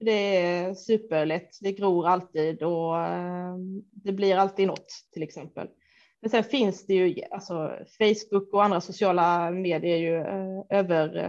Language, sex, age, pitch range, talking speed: Swedish, female, 20-39, 185-225 Hz, 145 wpm